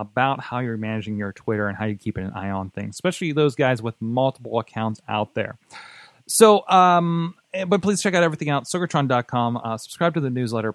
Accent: American